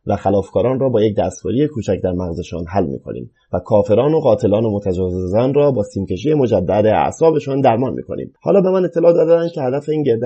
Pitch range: 95-130 Hz